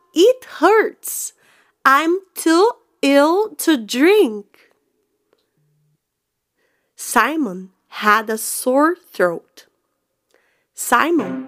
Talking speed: 70 wpm